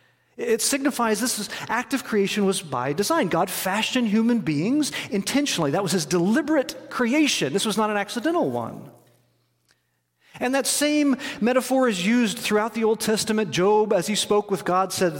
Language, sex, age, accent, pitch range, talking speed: English, male, 40-59, American, 150-230 Hz, 165 wpm